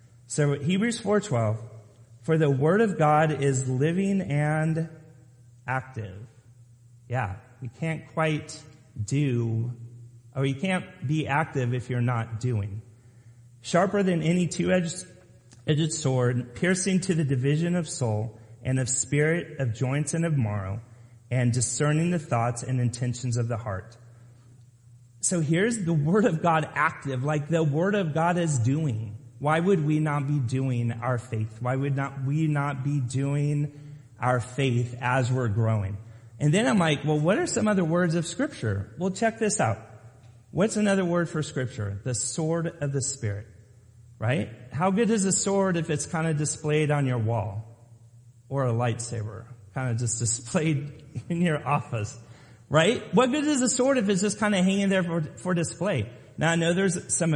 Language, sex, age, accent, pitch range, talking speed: English, male, 30-49, American, 120-165 Hz, 165 wpm